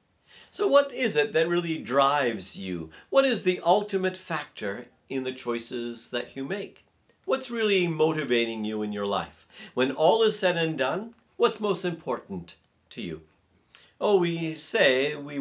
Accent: American